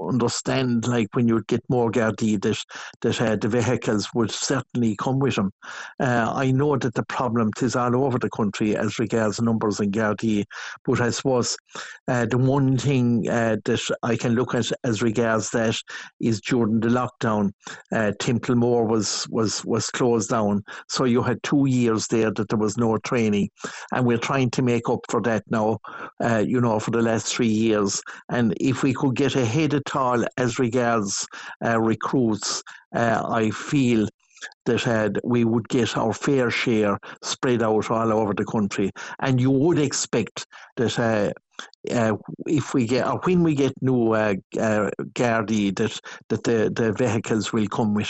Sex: male